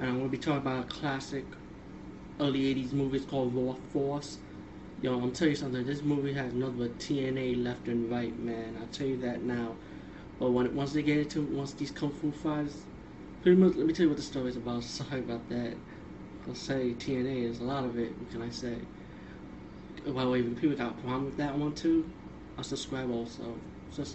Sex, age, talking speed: male, 30-49, 220 wpm